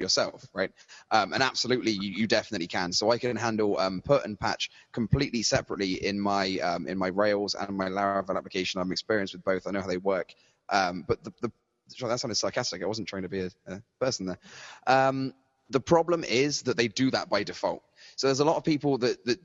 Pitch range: 95-125 Hz